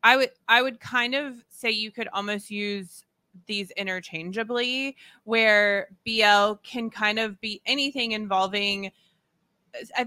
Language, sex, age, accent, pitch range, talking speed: English, female, 20-39, American, 190-230 Hz, 130 wpm